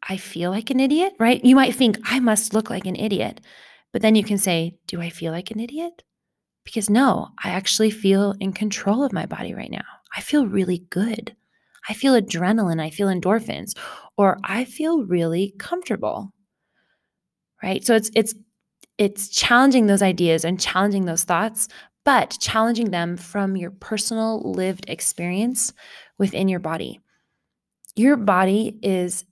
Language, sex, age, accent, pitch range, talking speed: English, female, 20-39, American, 185-225 Hz, 160 wpm